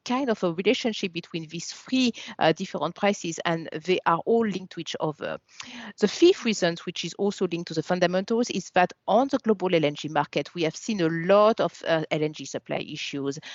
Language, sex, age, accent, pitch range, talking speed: English, female, 50-69, French, 155-210 Hz, 200 wpm